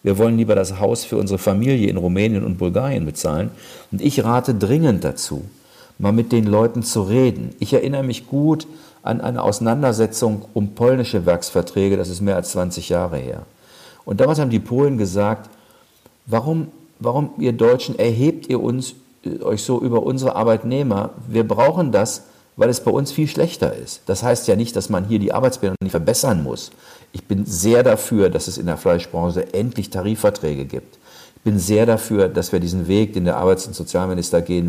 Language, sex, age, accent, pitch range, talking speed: German, male, 50-69, German, 95-125 Hz, 185 wpm